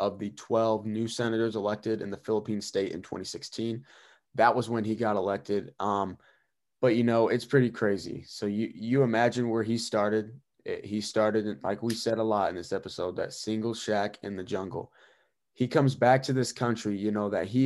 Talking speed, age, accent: 200 wpm, 20-39, American